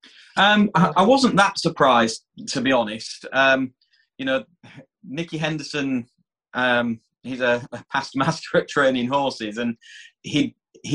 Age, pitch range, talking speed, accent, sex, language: 20-39, 115-150 Hz, 130 wpm, British, male, English